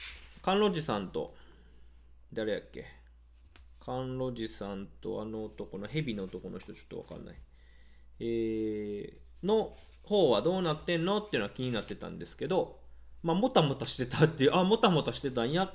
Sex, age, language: male, 20-39, Japanese